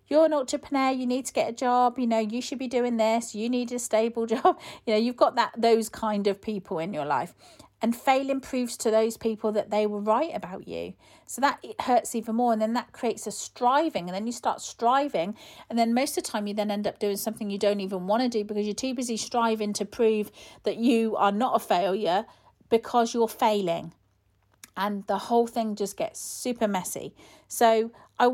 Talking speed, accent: 220 wpm, British